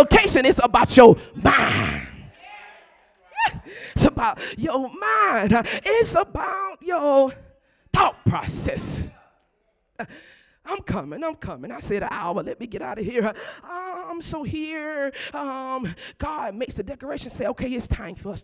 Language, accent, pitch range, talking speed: English, American, 225-310 Hz, 145 wpm